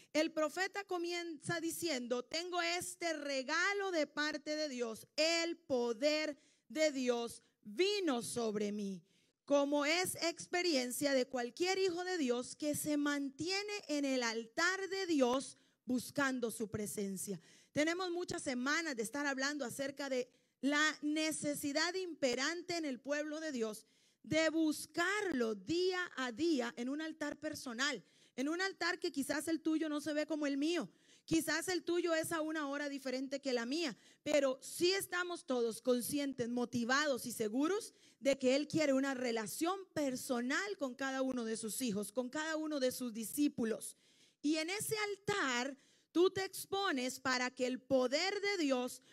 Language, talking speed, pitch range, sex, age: Spanish, 155 wpm, 250-330 Hz, female, 40-59